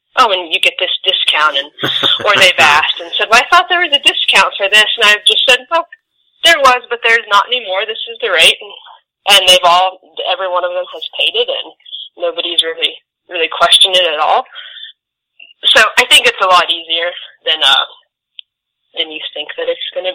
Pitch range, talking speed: 170-280 Hz, 210 wpm